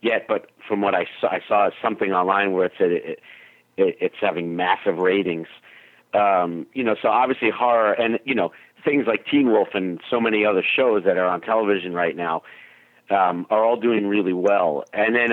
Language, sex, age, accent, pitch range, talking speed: English, male, 50-69, American, 90-110 Hz, 190 wpm